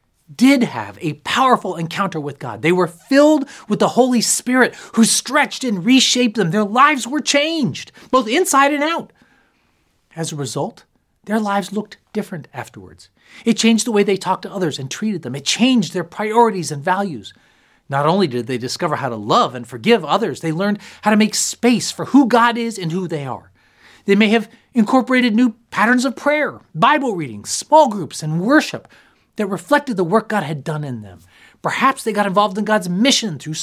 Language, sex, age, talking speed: English, male, 30-49, 195 wpm